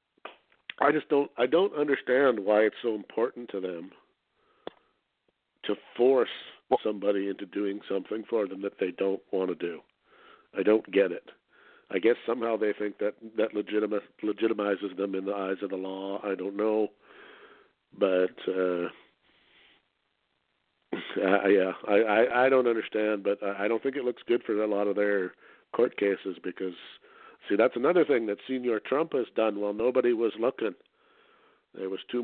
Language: English